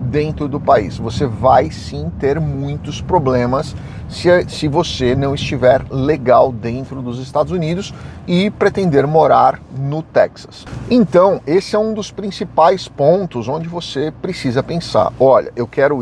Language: Portuguese